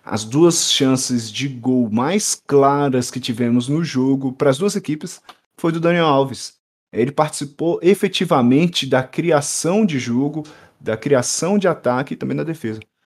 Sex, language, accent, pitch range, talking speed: male, Portuguese, Brazilian, 120-155 Hz, 155 wpm